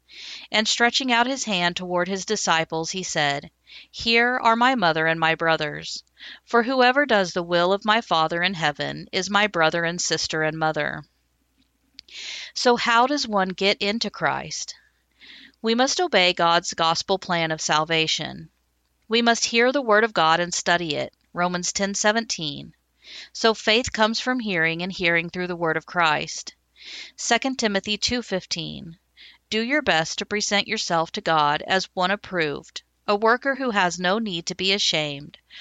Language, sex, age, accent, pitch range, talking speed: English, female, 40-59, American, 160-220 Hz, 160 wpm